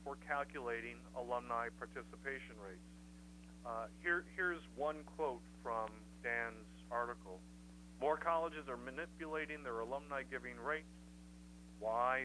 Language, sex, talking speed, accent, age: English, male, 110 wpm, American, 50-69